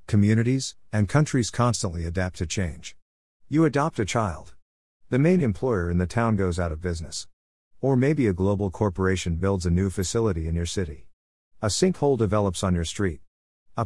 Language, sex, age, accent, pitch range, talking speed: English, male, 50-69, American, 85-115 Hz, 175 wpm